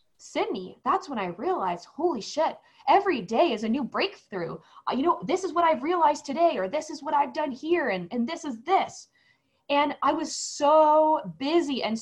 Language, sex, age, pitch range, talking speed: English, female, 20-39, 225-305 Hz, 195 wpm